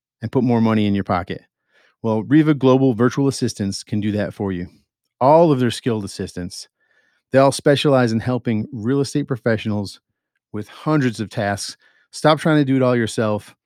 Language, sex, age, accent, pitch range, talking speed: English, male, 40-59, American, 105-125 Hz, 180 wpm